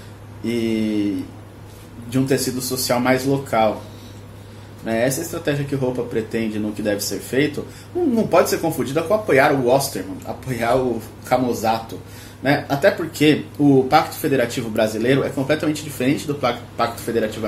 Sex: male